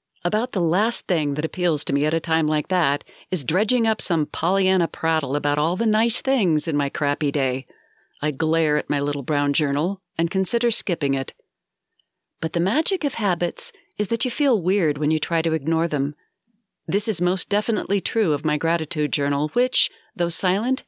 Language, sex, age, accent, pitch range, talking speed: English, female, 40-59, American, 155-210 Hz, 195 wpm